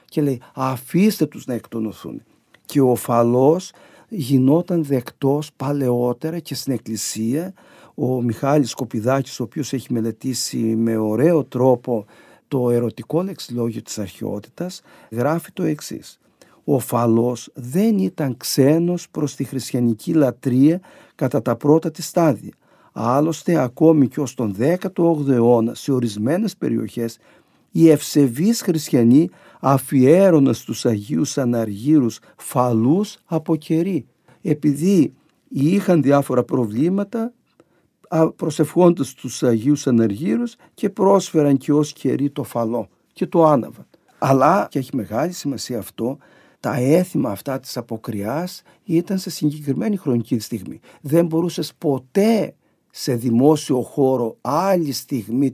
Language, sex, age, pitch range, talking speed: Greek, male, 50-69, 120-165 Hz, 120 wpm